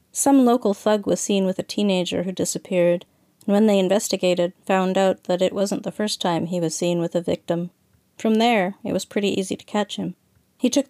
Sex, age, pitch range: female, 40-59, 180-205 Hz